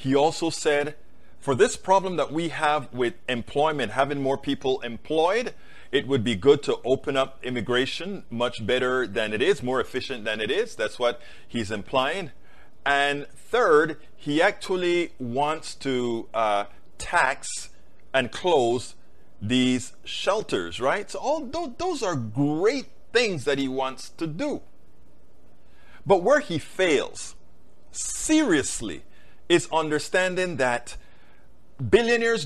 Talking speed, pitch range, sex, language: 130 wpm, 120-175 Hz, male, English